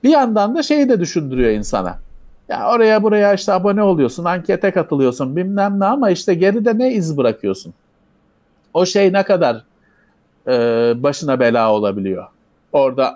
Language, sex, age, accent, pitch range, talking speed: Turkish, male, 50-69, native, 130-215 Hz, 145 wpm